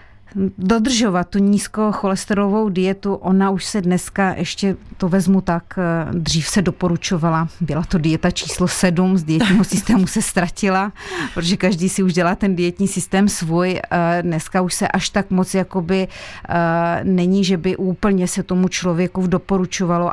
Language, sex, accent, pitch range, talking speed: Czech, female, native, 170-185 Hz, 145 wpm